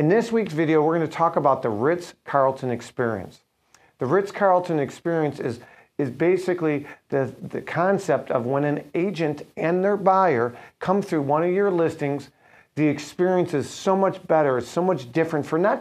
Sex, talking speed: male, 175 wpm